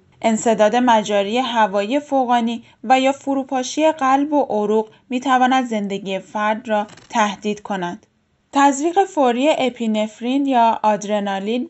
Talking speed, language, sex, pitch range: 110 wpm, Persian, female, 210-255 Hz